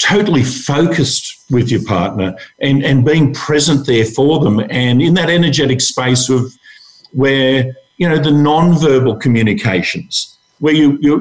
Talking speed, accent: 140 wpm, Australian